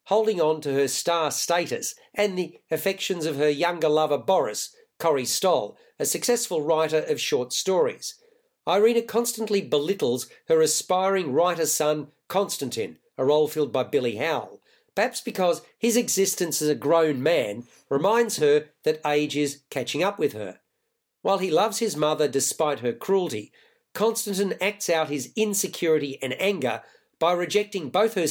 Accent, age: Australian, 50-69